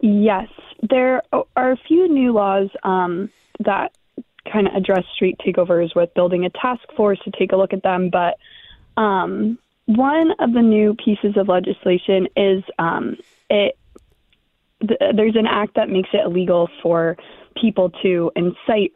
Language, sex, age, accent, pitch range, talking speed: English, female, 20-39, American, 180-220 Hz, 155 wpm